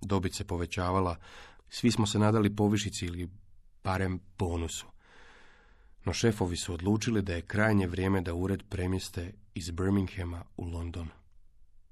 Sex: male